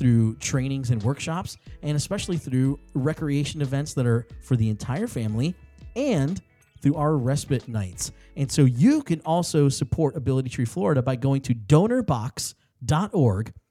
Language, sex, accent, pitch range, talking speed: English, male, American, 120-155 Hz, 145 wpm